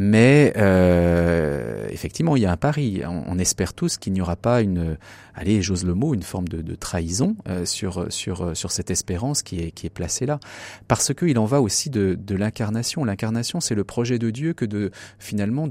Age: 30-49